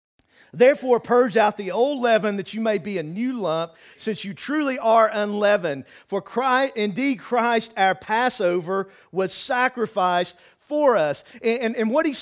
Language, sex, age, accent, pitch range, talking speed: English, male, 50-69, American, 190-255 Hz, 155 wpm